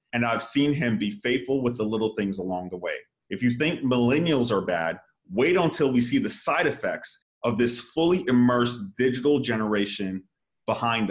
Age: 30-49